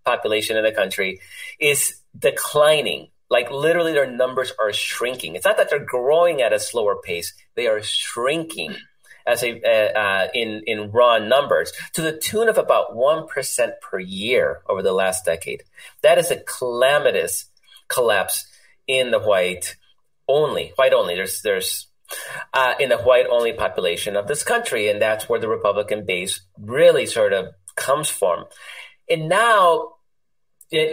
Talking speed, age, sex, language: 155 wpm, 30-49, male, English